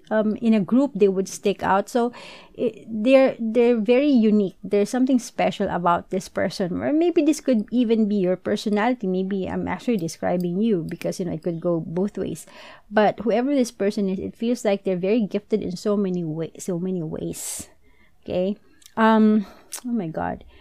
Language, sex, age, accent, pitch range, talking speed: English, female, 30-49, Filipino, 195-245 Hz, 185 wpm